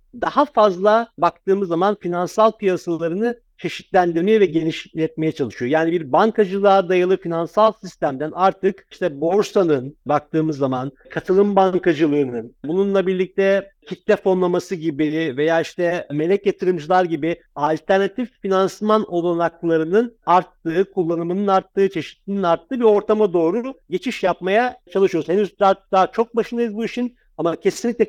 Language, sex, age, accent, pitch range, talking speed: Turkish, male, 50-69, native, 165-210 Hz, 120 wpm